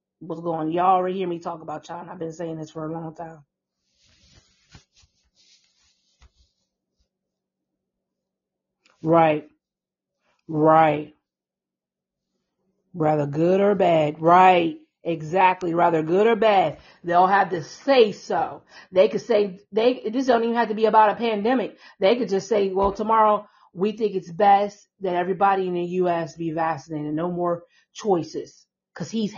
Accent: American